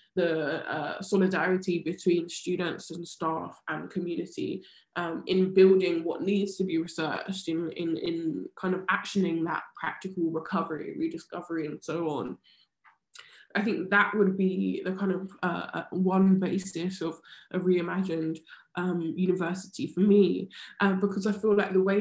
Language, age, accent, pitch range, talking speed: English, 10-29, British, 170-195 Hz, 150 wpm